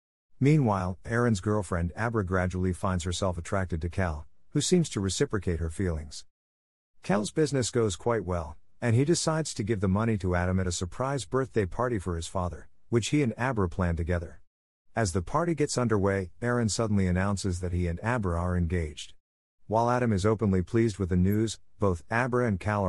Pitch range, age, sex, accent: 90-115 Hz, 50-69, male, American